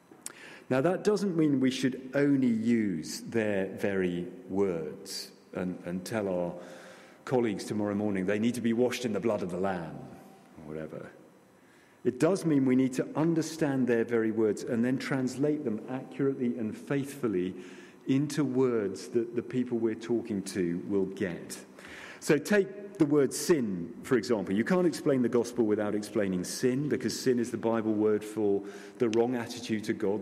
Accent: British